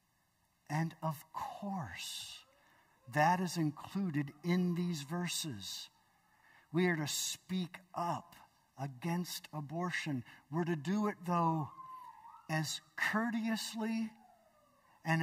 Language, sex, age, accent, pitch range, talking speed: English, male, 60-79, American, 125-185 Hz, 95 wpm